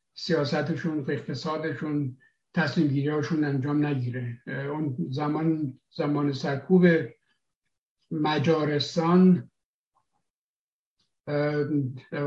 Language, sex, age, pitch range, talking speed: Persian, male, 60-79, 145-170 Hz, 60 wpm